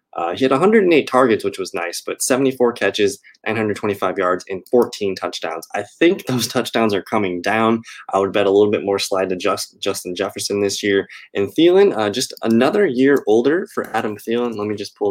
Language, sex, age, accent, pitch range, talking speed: English, male, 20-39, American, 100-130 Hz, 200 wpm